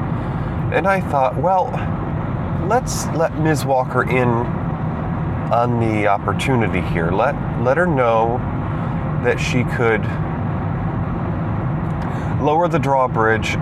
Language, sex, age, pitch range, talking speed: English, male, 30-49, 115-145 Hz, 100 wpm